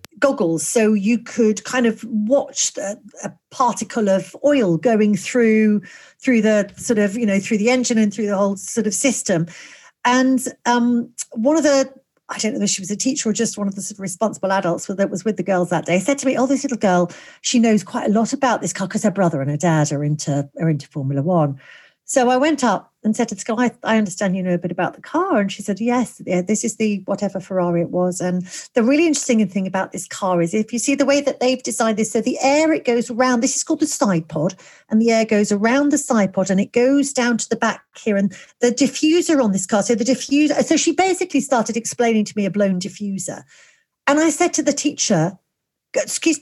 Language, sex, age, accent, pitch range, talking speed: English, female, 40-59, British, 195-260 Hz, 245 wpm